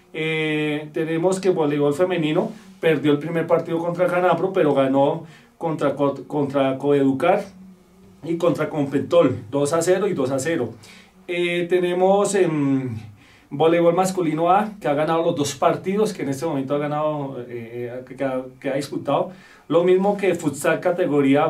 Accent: Colombian